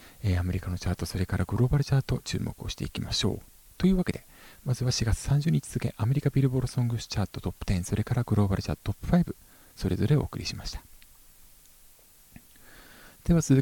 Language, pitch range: Japanese, 100-135 Hz